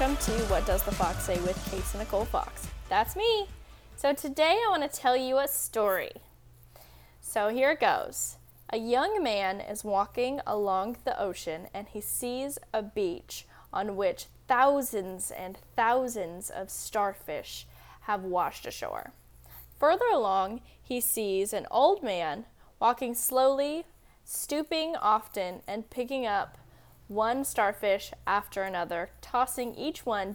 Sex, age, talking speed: female, 10-29, 140 wpm